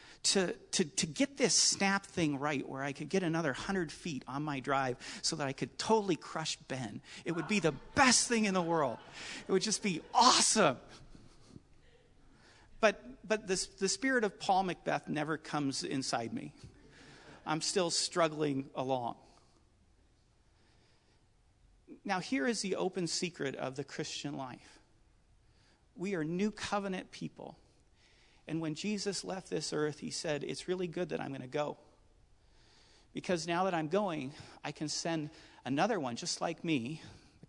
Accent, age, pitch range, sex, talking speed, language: American, 40-59, 145-195 Hz, male, 160 wpm, English